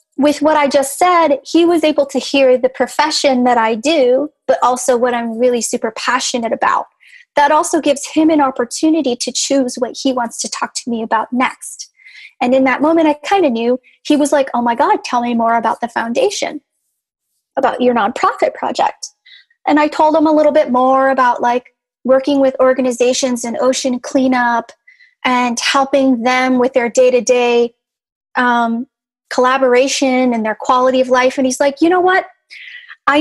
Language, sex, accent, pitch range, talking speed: English, female, American, 250-295 Hz, 180 wpm